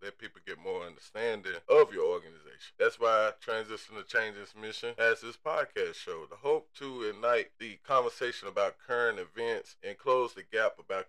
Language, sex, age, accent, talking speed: English, male, 20-39, American, 175 wpm